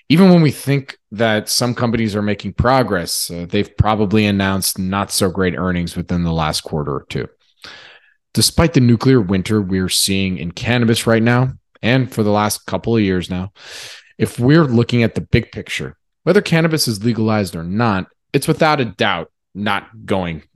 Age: 30-49